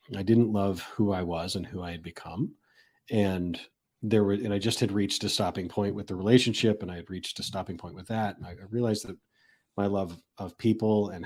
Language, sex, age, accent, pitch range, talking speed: English, male, 40-59, American, 90-105 Hz, 230 wpm